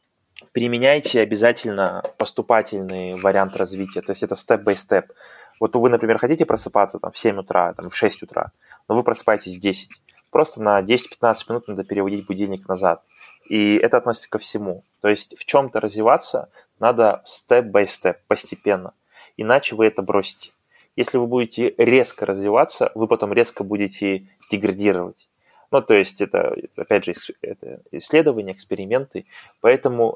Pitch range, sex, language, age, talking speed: 100-125 Hz, male, Russian, 20-39, 150 wpm